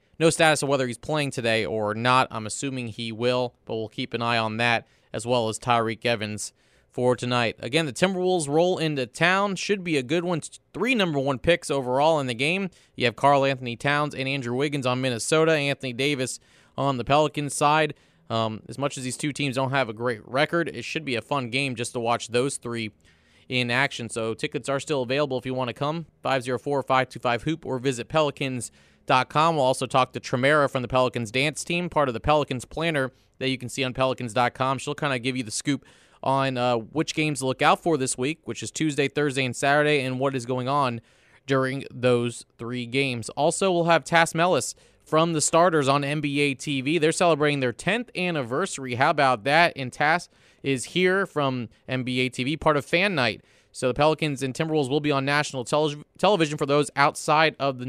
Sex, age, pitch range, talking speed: male, 30-49, 125-150 Hz, 205 wpm